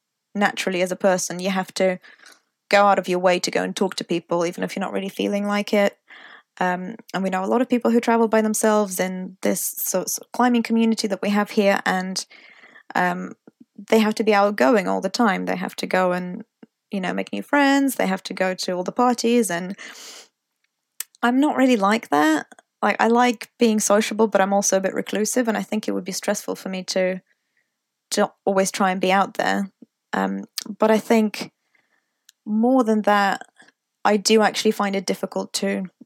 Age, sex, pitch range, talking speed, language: 20-39, female, 185-230 Hz, 205 wpm, English